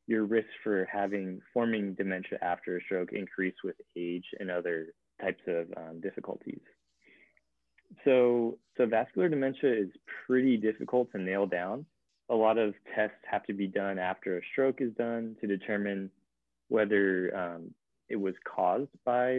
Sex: male